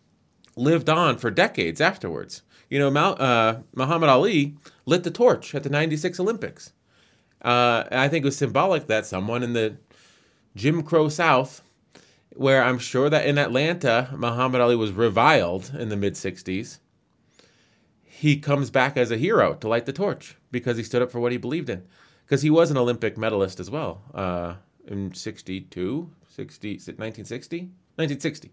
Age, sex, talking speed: 30-49, male, 155 wpm